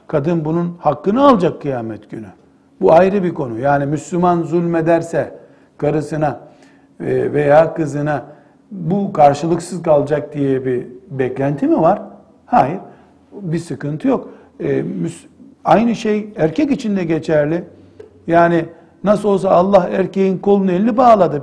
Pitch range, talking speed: 155-200 Hz, 120 wpm